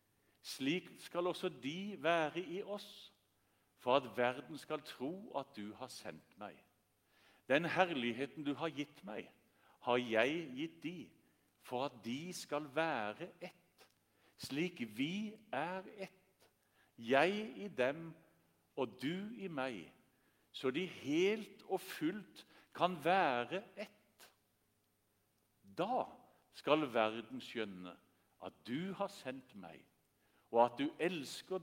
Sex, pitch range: male, 110-175 Hz